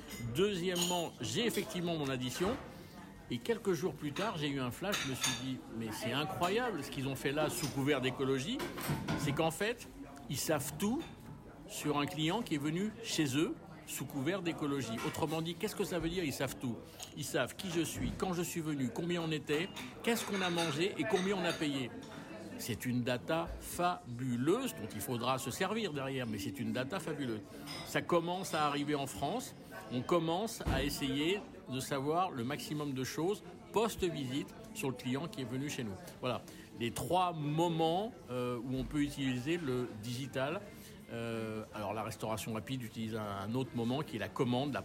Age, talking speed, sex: 60-79, 190 wpm, male